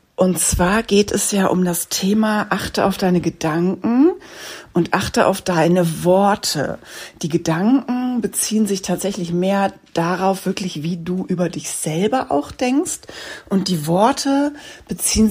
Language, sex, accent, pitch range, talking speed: German, female, German, 170-220 Hz, 140 wpm